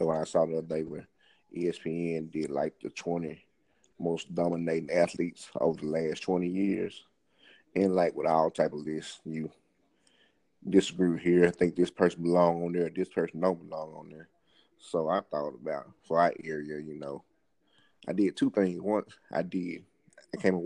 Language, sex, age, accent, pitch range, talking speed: English, male, 30-49, American, 85-95 Hz, 185 wpm